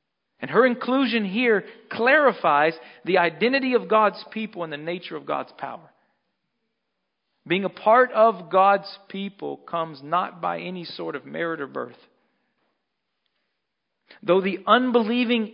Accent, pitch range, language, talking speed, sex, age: American, 155-215 Hz, English, 130 wpm, male, 50-69